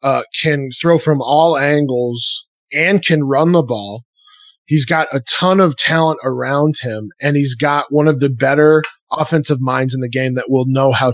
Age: 20-39